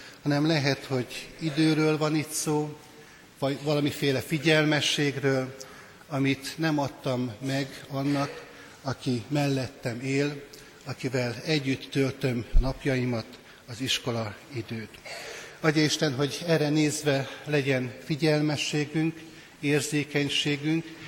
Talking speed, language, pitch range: 95 wpm, Hungarian, 130-150 Hz